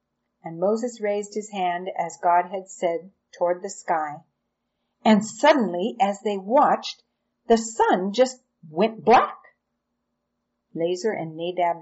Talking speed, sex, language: 125 wpm, female, English